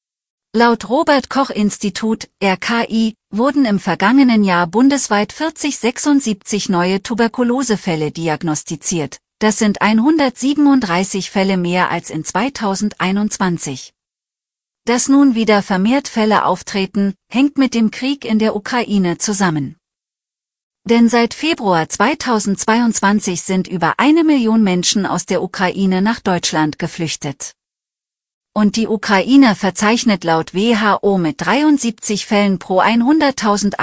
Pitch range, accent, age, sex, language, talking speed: 175-230 Hz, German, 40-59, female, German, 110 wpm